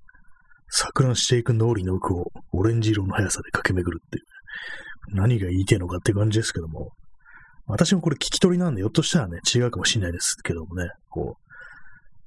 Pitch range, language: 95-130 Hz, Japanese